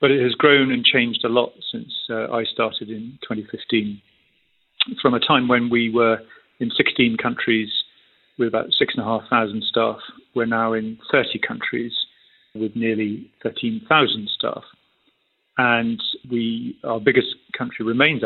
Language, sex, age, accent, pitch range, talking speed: English, male, 40-59, British, 110-120 Hz, 135 wpm